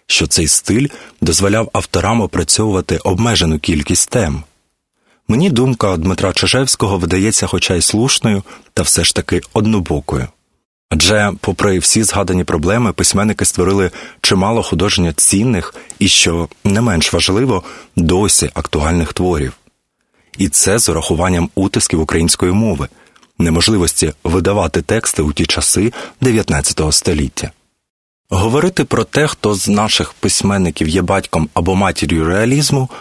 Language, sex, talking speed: Ukrainian, male, 120 wpm